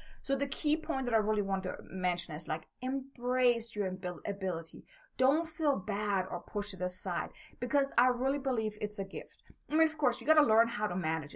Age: 30-49